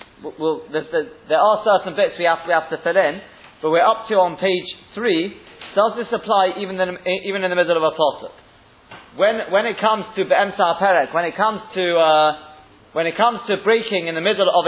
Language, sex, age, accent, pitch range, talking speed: English, male, 30-49, British, 160-205 Hz, 220 wpm